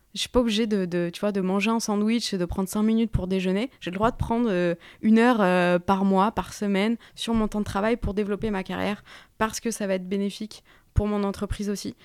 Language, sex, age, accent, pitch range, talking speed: French, female, 20-39, French, 185-225 Hz, 260 wpm